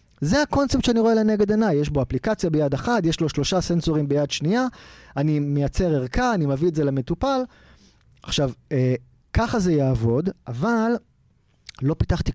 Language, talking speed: Hebrew, 155 wpm